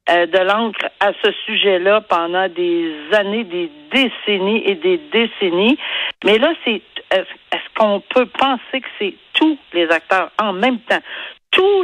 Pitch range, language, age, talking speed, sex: 180-255 Hz, French, 60-79, 155 wpm, female